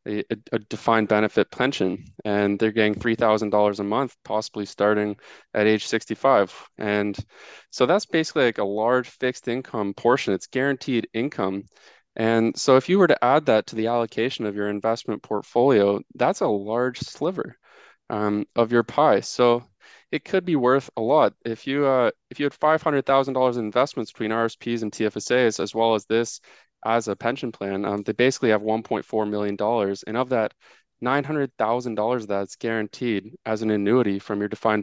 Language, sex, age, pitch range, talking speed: English, male, 20-39, 105-120 Hz, 170 wpm